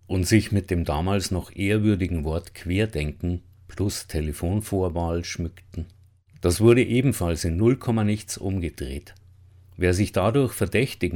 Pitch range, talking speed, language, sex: 85-105 Hz, 125 wpm, German, male